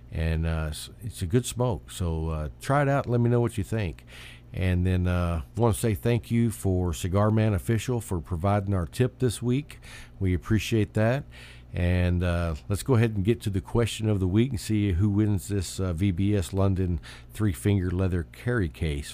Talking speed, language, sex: 205 wpm, English, male